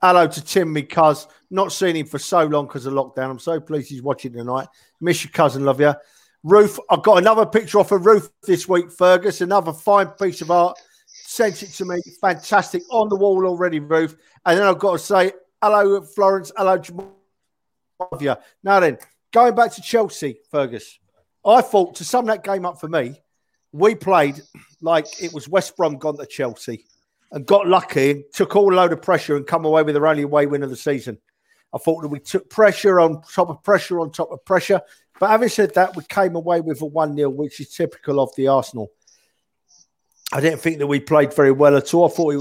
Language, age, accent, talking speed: English, 40-59, British, 210 wpm